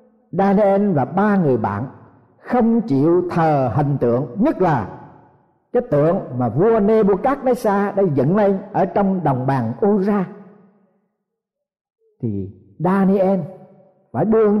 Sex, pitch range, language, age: male, 150-245 Hz, Vietnamese, 50-69